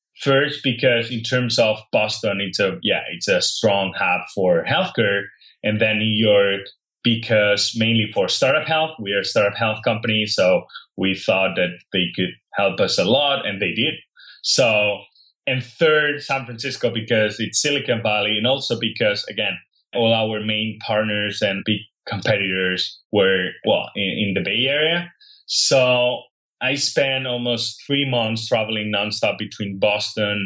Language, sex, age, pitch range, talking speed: English, male, 30-49, 100-120 Hz, 160 wpm